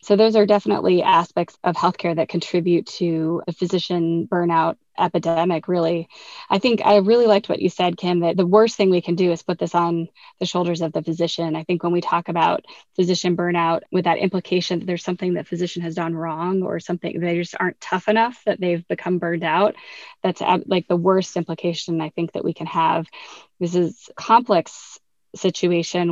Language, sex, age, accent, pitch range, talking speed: English, female, 20-39, American, 170-190 Hz, 200 wpm